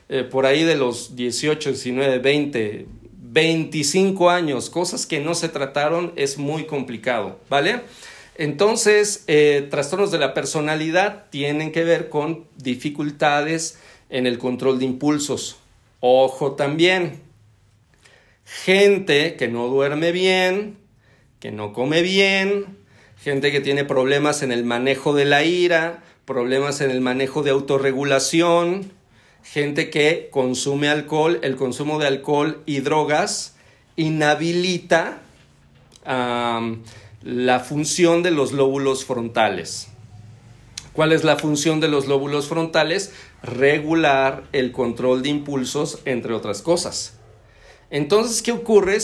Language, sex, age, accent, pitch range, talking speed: Spanish, male, 40-59, Mexican, 130-165 Hz, 120 wpm